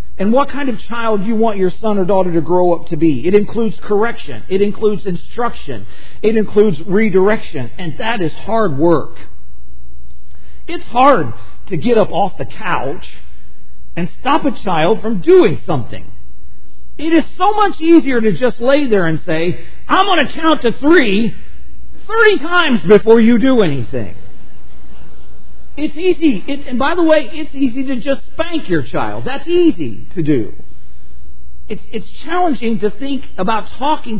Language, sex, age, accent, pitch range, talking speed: English, male, 50-69, American, 160-255 Hz, 165 wpm